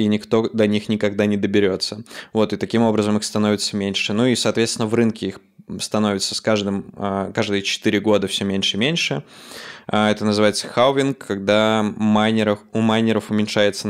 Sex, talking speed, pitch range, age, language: male, 145 wpm, 105-115 Hz, 20-39, Russian